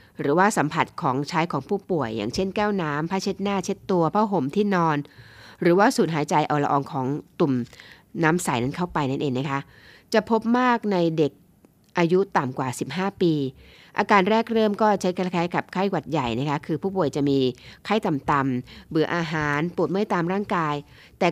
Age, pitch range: 20-39, 145-195 Hz